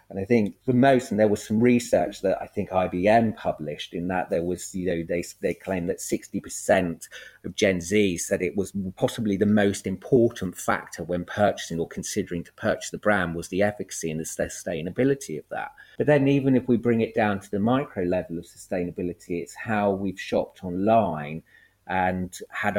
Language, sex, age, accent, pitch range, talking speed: English, male, 30-49, British, 90-110 Hz, 195 wpm